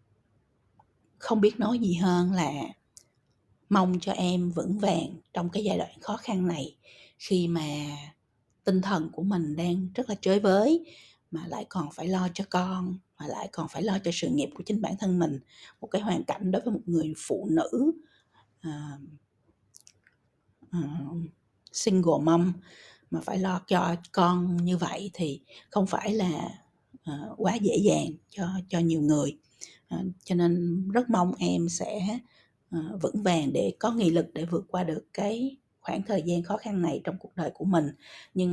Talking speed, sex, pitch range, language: 175 wpm, female, 165-205 Hz, Vietnamese